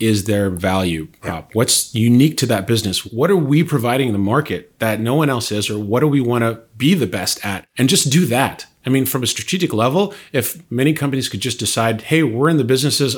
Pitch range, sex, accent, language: 110-145 Hz, male, American, English